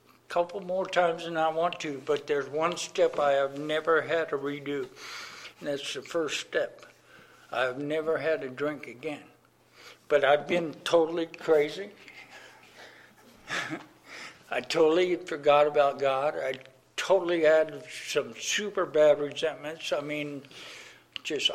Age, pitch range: 60-79, 140-165 Hz